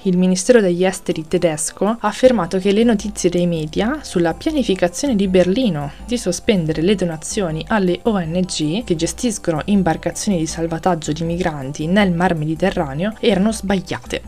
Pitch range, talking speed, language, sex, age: 170-210 Hz, 145 wpm, Italian, female, 20-39